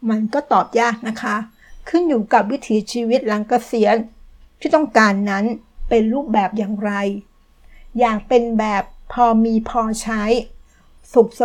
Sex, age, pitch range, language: female, 60-79, 215-245 Hz, Thai